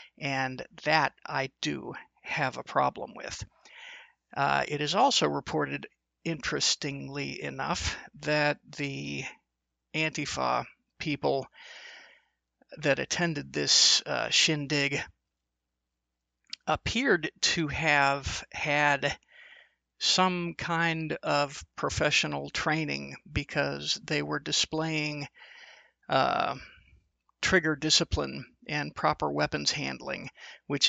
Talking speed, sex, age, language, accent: 85 wpm, male, 50-69, English, American